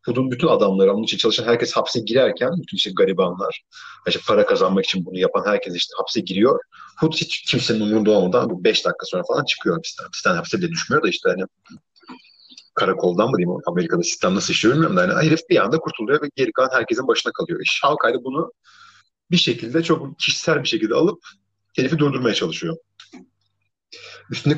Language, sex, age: Turkish, male, 30-49